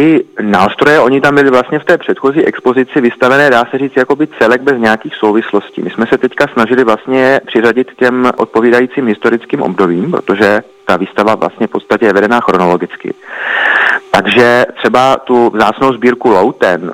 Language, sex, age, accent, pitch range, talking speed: Czech, male, 30-49, native, 105-125 Hz, 155 wpm